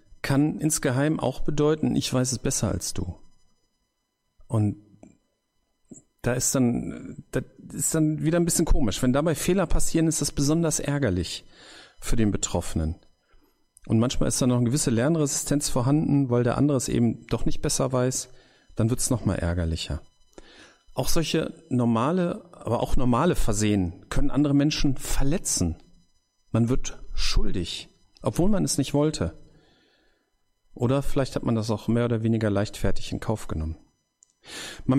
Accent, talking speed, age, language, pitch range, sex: German, 145 wpm, 40-59, German, 100-145 Hz, male